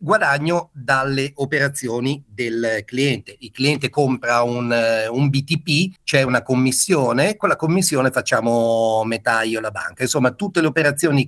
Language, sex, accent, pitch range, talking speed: Italian, male, native, 120-170 Hz, 145 wpm